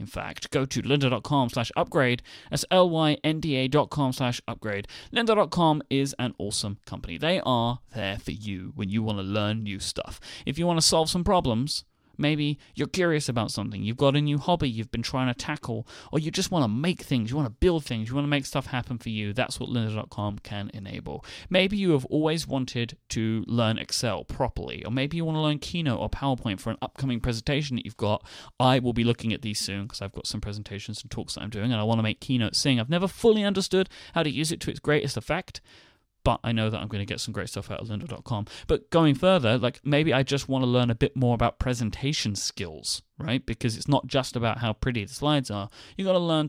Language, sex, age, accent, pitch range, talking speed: English, male, 30-49, British, 110-150 Hz, 235 wpm